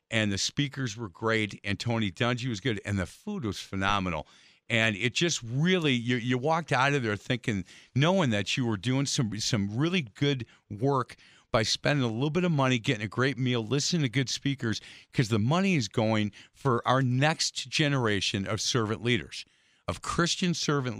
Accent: American